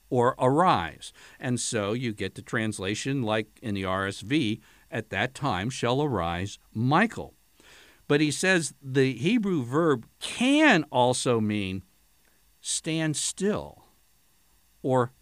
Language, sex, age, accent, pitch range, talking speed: English, male, 60-79, American, 105-135 Hz, 120 wpm